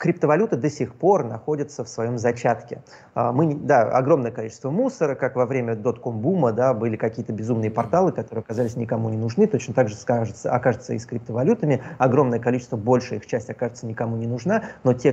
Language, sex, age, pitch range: Russian, male, 30-49, 115-140 Hz